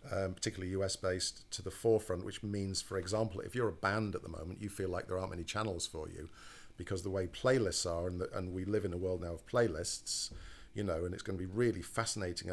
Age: 50-69